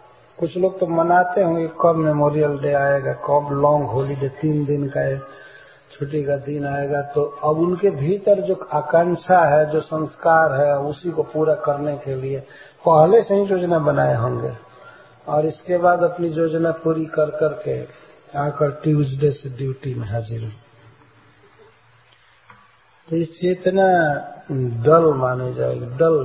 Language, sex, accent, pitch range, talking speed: English, male, Indian, 135-165 Hz, 135 wpm